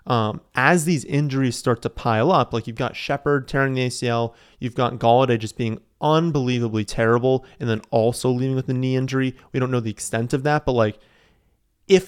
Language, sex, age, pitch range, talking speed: English, male, 30-49, 115-140 Hz, 200 wpm